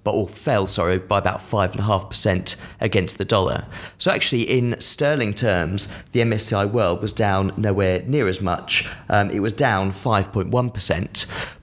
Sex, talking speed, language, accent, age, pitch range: male, 145 wpm, English, British, 30-49, 95-120 Hz